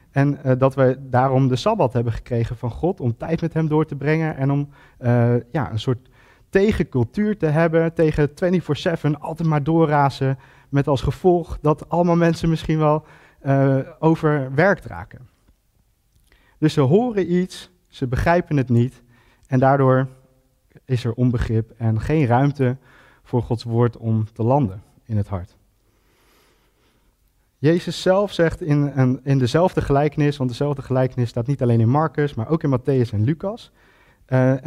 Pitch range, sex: 120-155 Hz, male